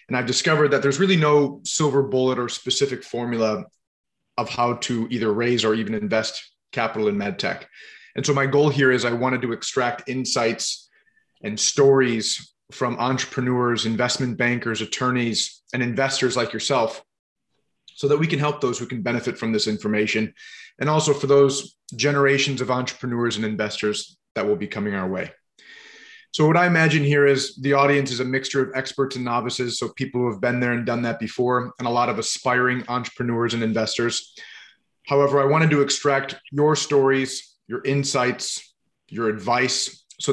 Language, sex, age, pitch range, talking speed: English, male, 30-49, 120-140 Hz, 175 wpm